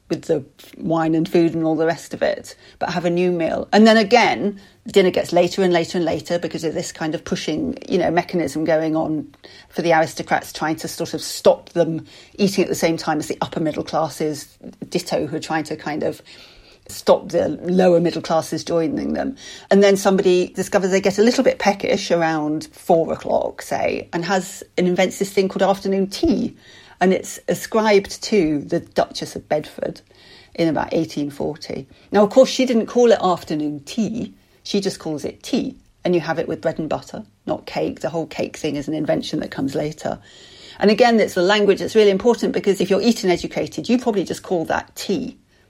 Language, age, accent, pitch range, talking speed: English, 40-59, British, 160-200 Hz, 205 wpm